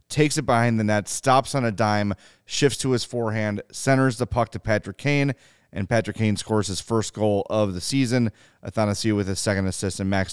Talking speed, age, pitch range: 210 wpm, 30-49, 100-125 Hz